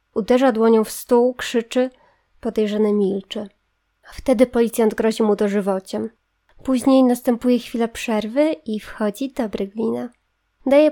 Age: 20-39